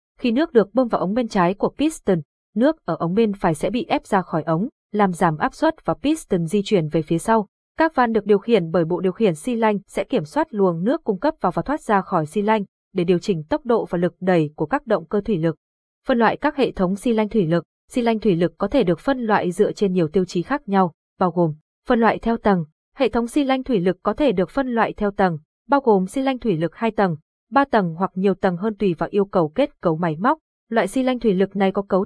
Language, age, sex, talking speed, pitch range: Vietnamese, 20-39, female, 270 wpm, 180-235 Hz